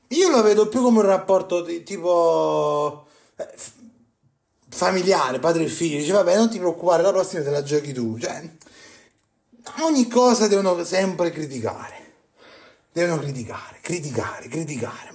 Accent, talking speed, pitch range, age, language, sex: native, 145 wpm, 130-190 Hz, 30-49, Italian, male